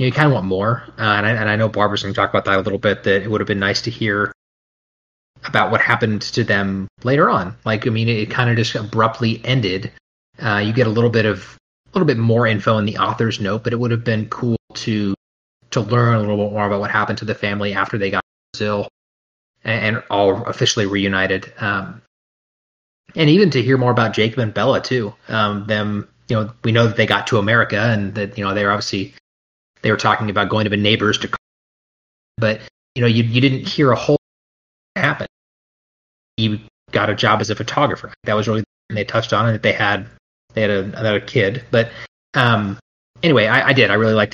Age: 30-49